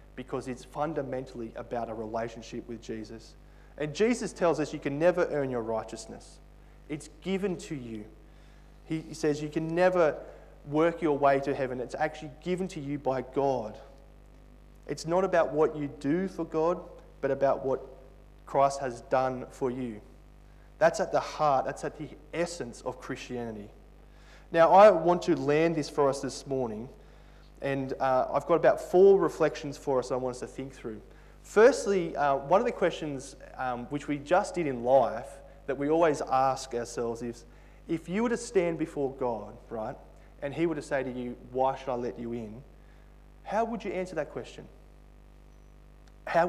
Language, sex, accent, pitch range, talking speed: English, male, Australian, 125-160 Hz, 180 wpm